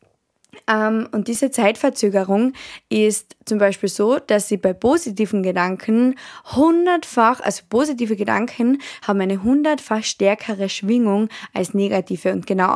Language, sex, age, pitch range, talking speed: German, female, 20-39, 195-225 Hz, 120 wpm